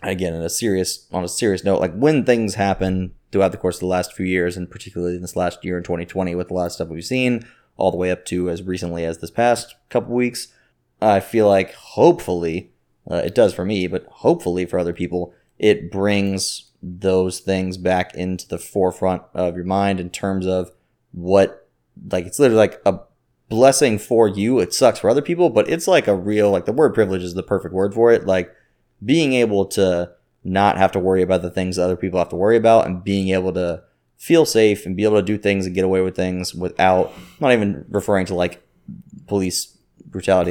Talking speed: 220 wpm